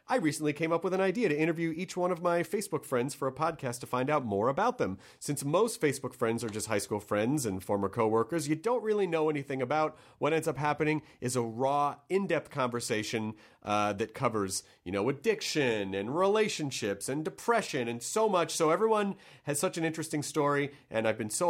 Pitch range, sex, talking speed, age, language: 115-175 Hz, male, 210 wpm, 30-49, English